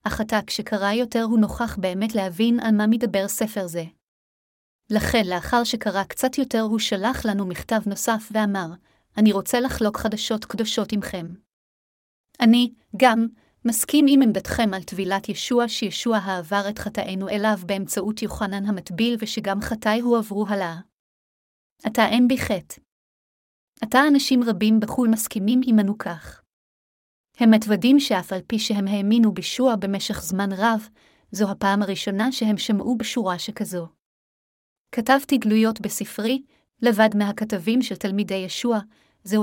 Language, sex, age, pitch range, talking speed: Hebrew, female, 30-49, 200-235 Hz, 130 wpm